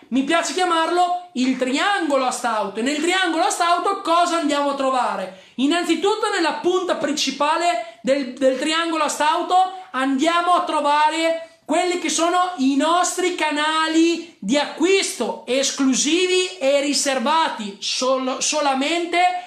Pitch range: 275-335 Hz